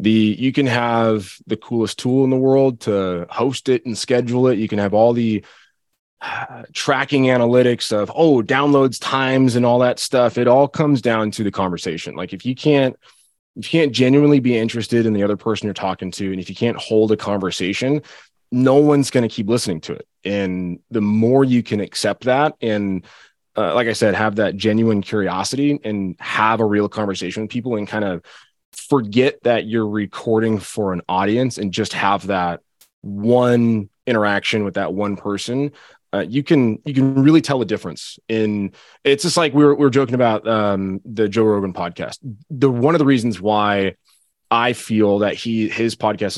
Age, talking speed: 20-39, 195 wpm